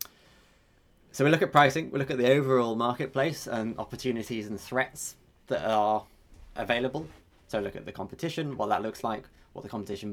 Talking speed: 180 wpm